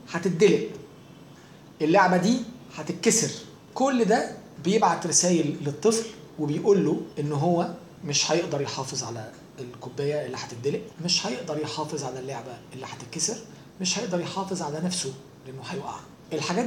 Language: Arabic